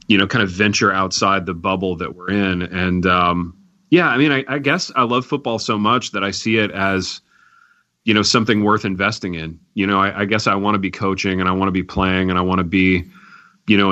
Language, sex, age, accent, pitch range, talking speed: English, male, 30-49, American, 95-115 Hz, 250 wpm